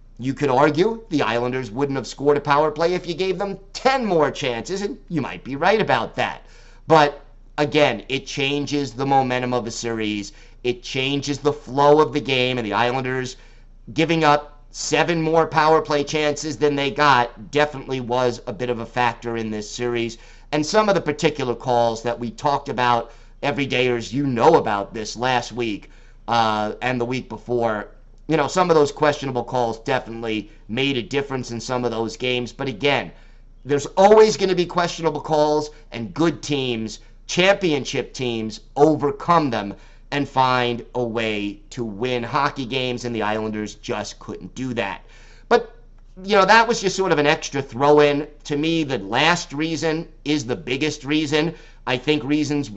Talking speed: 180 wpm